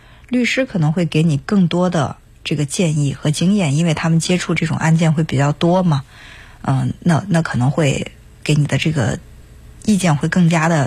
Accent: native